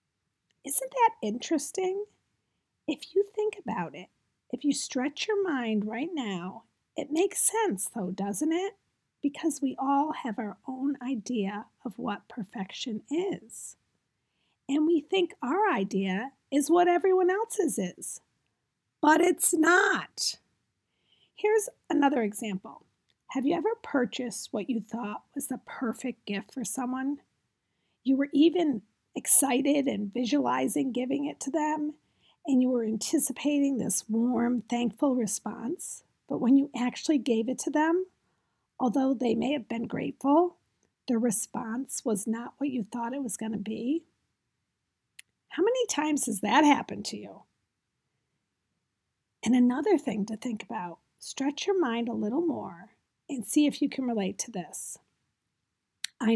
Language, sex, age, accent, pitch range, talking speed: English, female, 40-59, American, 230-310 Hz, 145 wpm